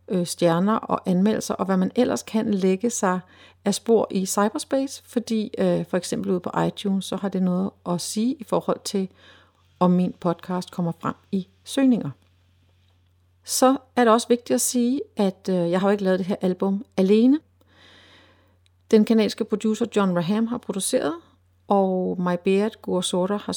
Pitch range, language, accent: 175-215 Hz, Danish, native